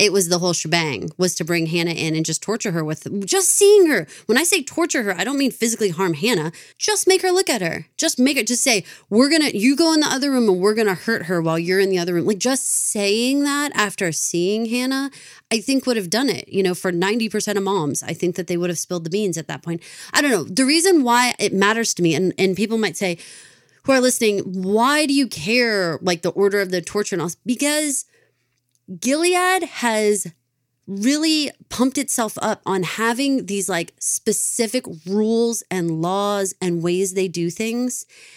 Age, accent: 30-49, American